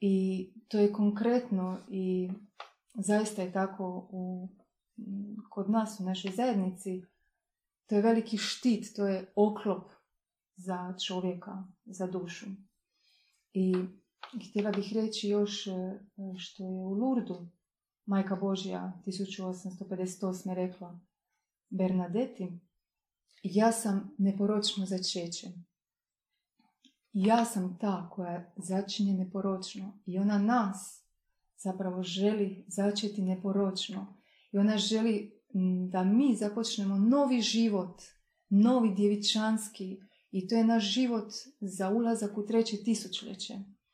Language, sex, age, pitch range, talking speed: Croatian, female, 30-49, 185-215 Hz, 105 wpm